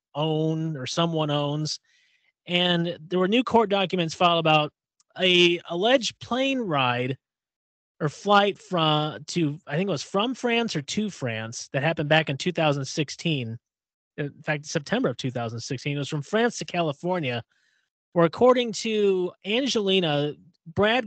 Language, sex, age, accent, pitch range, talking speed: English, male, 30-49, American, 145-195 Hz, 140 wpm